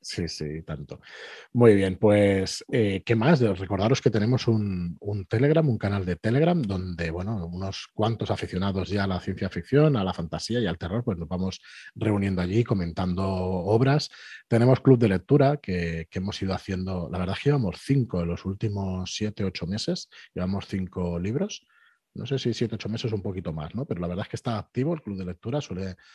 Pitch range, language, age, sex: 90-115 Hz, Spanish, 30-49, male